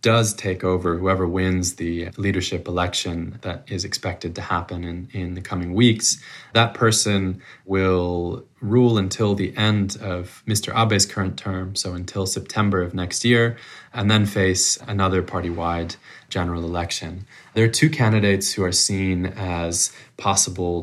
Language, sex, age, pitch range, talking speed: English, male, 20-39, 90-100 Hz, 150 wpm